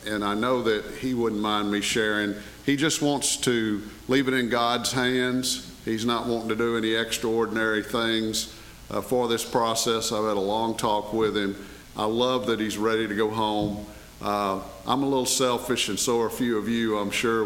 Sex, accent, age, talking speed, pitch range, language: male, American, 50-69, 205 wpm, 100-120 Hz, English